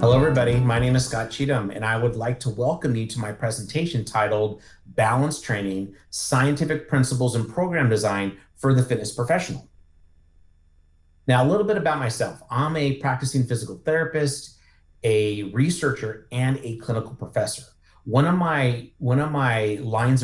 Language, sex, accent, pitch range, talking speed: English, male, American, 100-130 Hz, 155 wpm